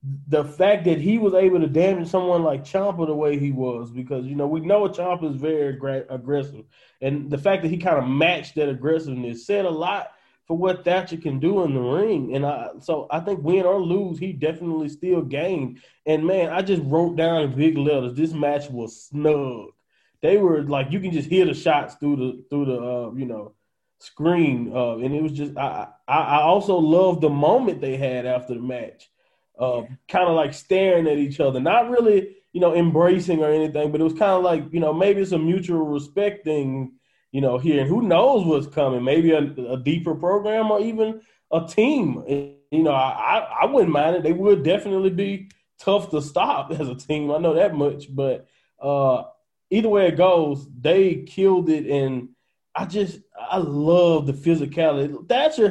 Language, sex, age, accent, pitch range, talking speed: English, male, 20-39, American, 140-185 Hz, 205 wpm